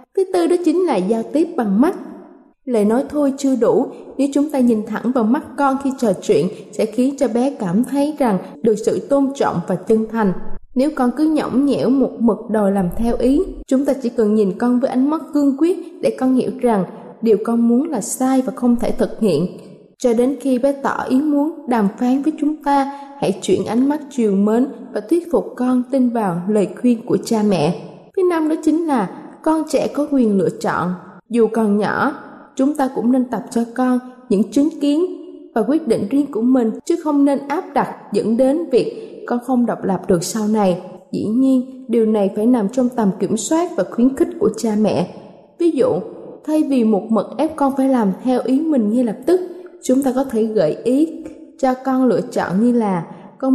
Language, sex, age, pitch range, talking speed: Vietnamese, female, 20-39, 215-285 Hz, 215 wpm